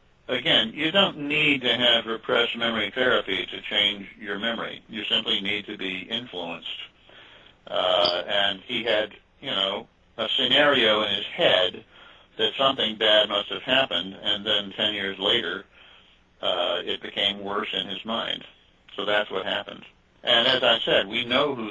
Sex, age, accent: male, 50-69, American